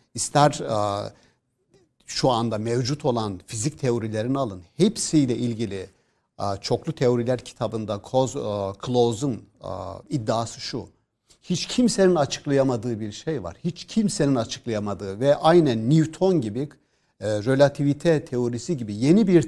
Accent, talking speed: native, 105 wpm